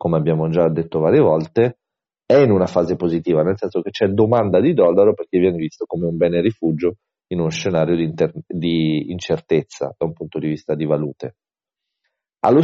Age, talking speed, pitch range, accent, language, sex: 40-59, 185 wpm, 85-110 Hz, native, Italian, male